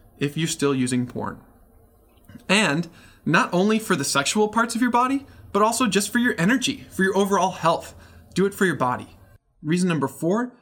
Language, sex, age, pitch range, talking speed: English, male, 20-39, 130-190 Hz, 185 wpm